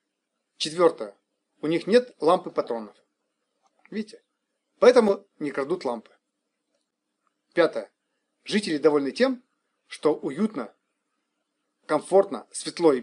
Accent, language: native, Russian